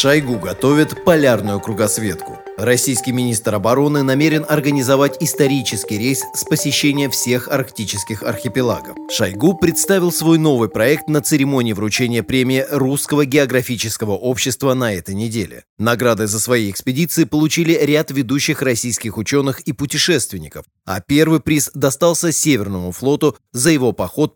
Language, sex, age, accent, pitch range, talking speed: Russian, male, 30-49, native, 110-145 Hz, 125 wpm